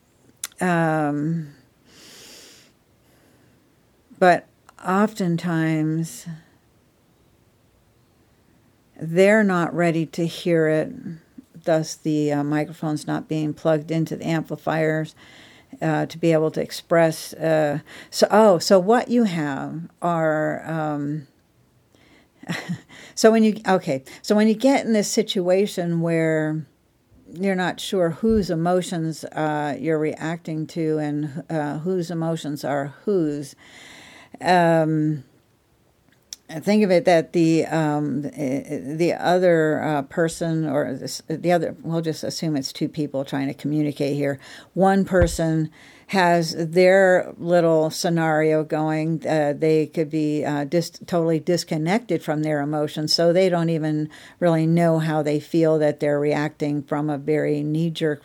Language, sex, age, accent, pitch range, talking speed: English, female, 60-79, American, 150-170 Hz, 120 wpm